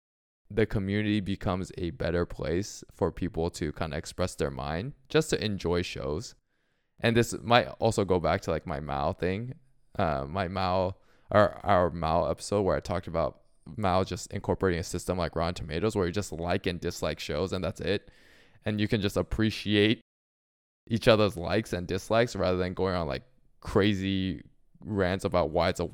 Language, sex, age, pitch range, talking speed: English, male, 20-39, 85-110 Hz, 185 wpm